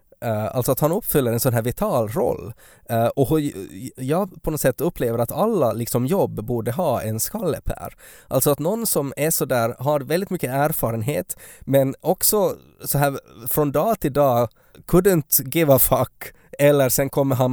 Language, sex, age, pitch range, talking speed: Swedish, male, 20-39, 110-140 Hz, 170 wpm